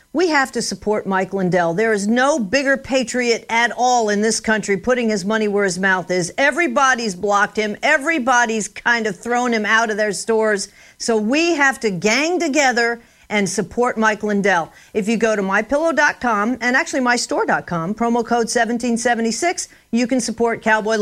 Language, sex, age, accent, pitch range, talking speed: English, female, 50-69, American, 195-260 Hz, 170 wpm